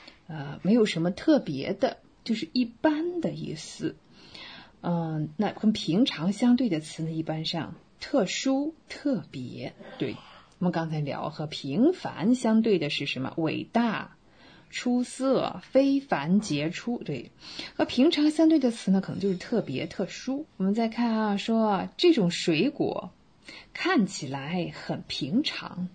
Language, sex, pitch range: English, female, 160-245 Hz